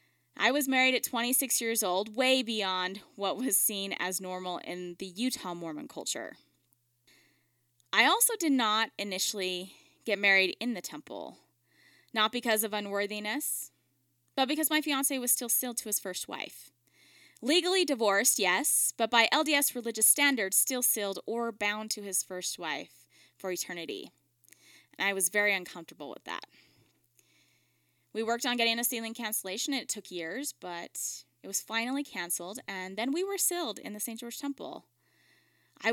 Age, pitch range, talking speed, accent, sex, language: 10-29, 185-260 Hz, 160 wpm, American, female, English